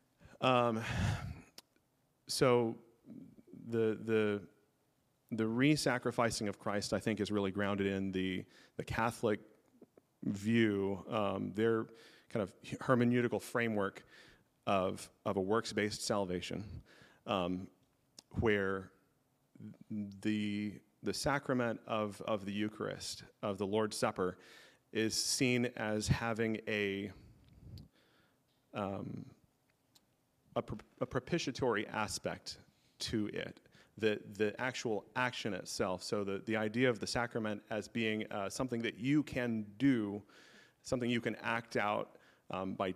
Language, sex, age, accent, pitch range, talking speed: English, male, 30-49, American, 100-120 Hz, 110 wpm